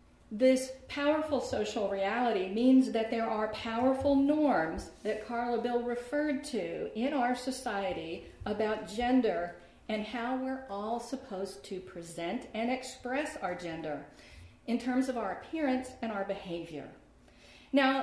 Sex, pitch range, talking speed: female, 190-250 Hz, 135 wpm